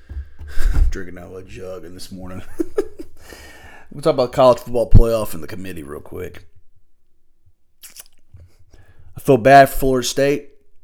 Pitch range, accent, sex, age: 90-130 Hz, American, male, 30-49